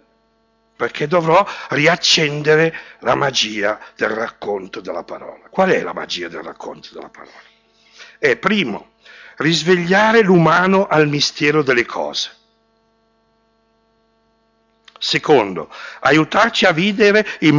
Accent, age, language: native, 60-79, Italian